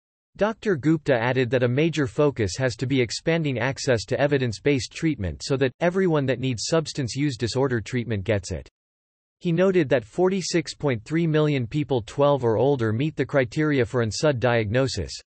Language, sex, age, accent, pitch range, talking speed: English, male, 40-59, American, 115-155 Hz, 165 wpm